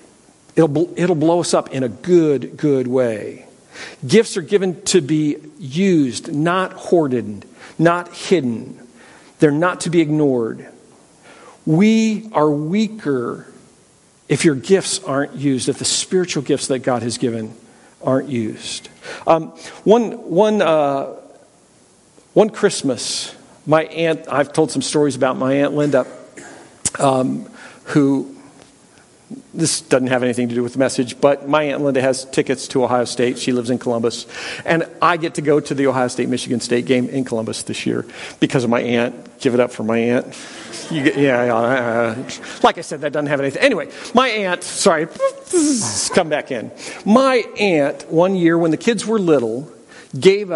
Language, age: English, 50-69